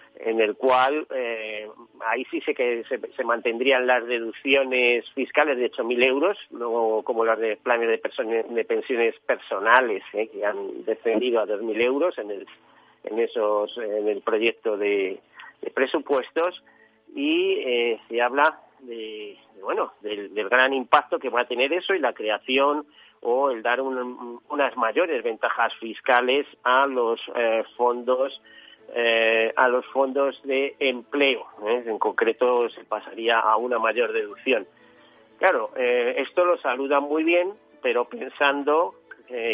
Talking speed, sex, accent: 150 wpm, male, Spanish